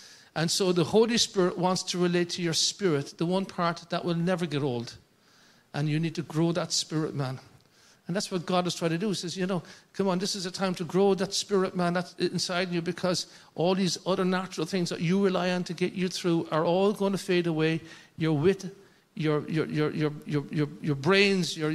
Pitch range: 155-185 Hz